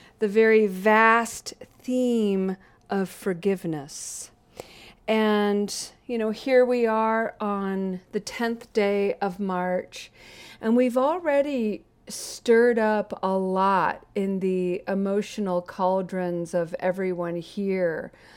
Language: English